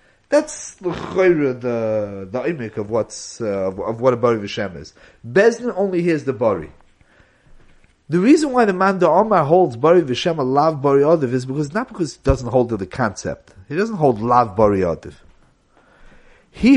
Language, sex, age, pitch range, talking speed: English, male, 40-59, 130-220 Hz, 185 wpm